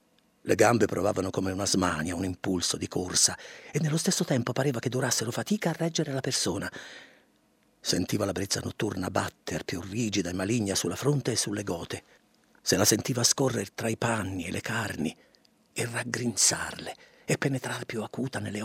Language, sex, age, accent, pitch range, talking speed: Italian, male, 50-69, native, 100-140 Hz, 170 wpm